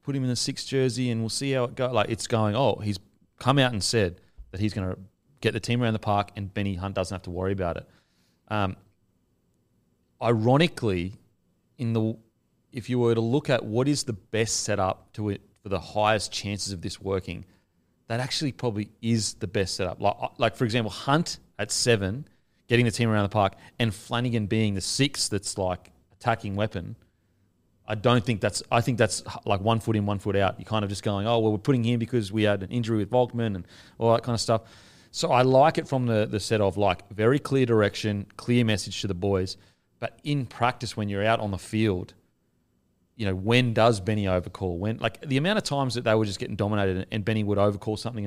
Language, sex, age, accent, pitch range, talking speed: English, male, 30-49, Australian, 100-120 Hz, 225 wpm